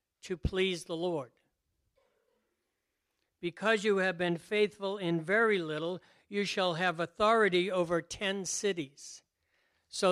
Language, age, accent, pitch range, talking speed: English, 60-79, American, 165-200 Hz, 120 wpm